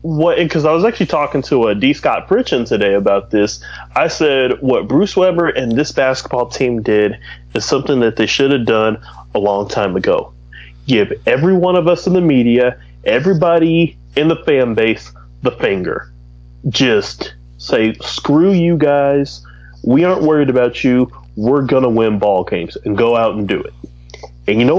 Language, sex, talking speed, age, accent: English, male, 180 wpm, 30-49, American